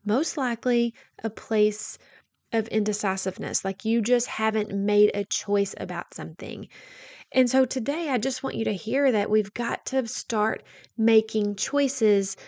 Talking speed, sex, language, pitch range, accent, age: 150 wpm, female, English, 210-250 Hz, American, 30-49